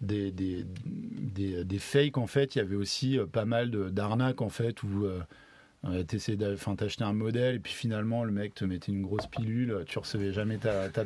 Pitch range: 100-130 Hz